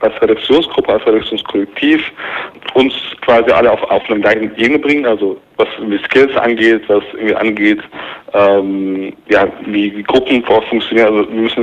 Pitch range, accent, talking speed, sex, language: 110-130 Hz, German, 150 wpm, male, German